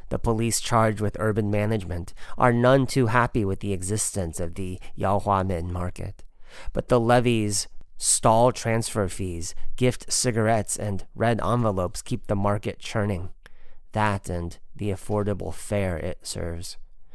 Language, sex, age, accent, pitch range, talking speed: English, male, 30-49, American, 95-125 Hz, 135 wpm